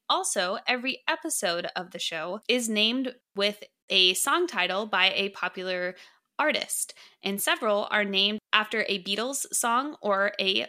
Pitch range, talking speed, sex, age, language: 190-245 Hz, 145 wpm, female, 20-39, English